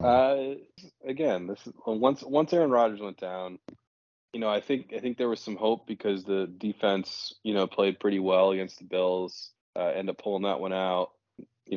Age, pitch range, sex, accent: 20-39, 90-115 Hz, male, American